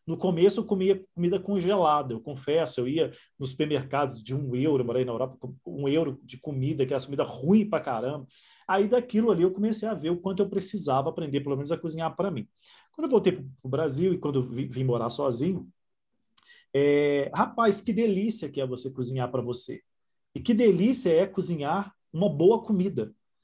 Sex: male